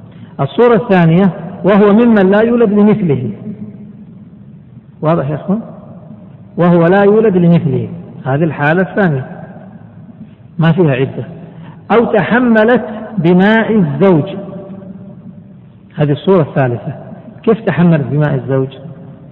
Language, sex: Arabic, male